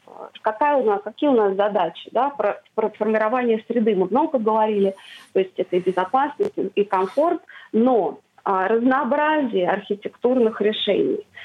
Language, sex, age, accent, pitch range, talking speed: Russian, female, 30-49, native, 195-250 Hz, 140 wpm